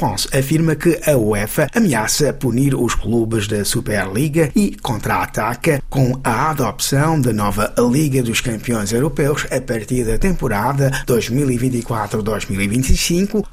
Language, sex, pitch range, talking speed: Portuguese, male, 115-165 Hz, 115 wpm